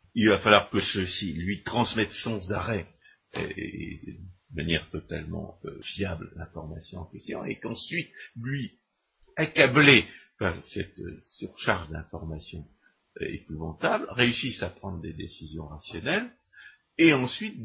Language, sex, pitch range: French, male, 80-105 Hz